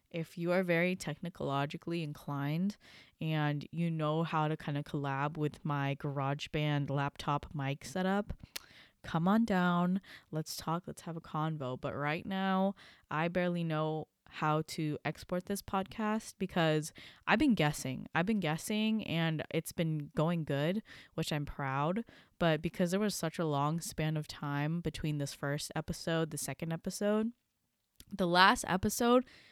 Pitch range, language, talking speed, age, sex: 150-180 Hz, English, 155 wpm, 20-39, female